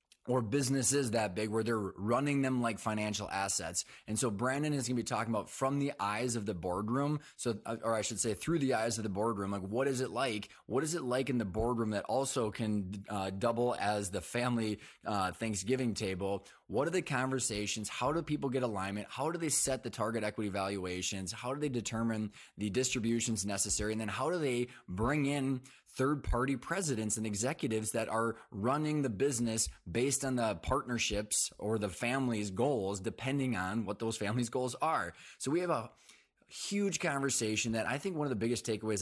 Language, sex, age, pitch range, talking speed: English, male, 20-39, 105-130 Hz, 200 wpm